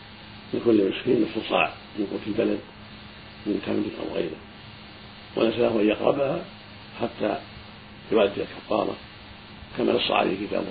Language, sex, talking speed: Arabic, male, 120 wpm